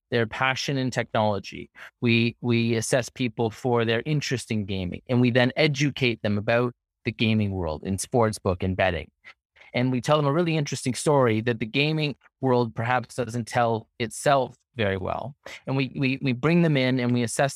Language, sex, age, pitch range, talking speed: English, male, 30-49, 105-130 Hz, 190 wpm